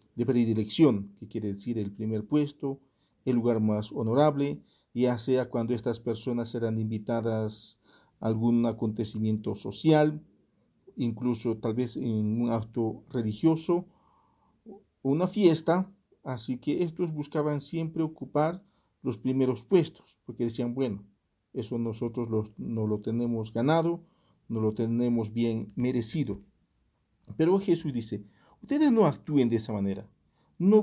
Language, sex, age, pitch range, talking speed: English, male, 50-69, 115-165 Hz, 125 wpm